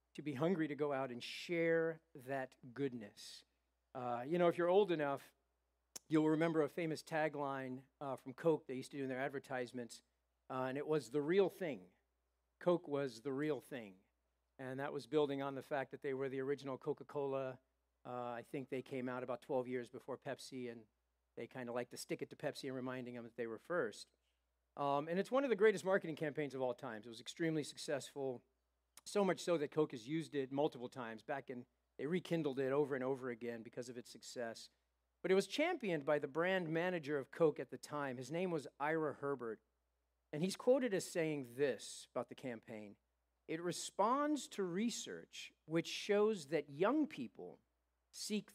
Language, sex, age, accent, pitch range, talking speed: English, male, 50-69, American, 120-160 Hz, 200 wpm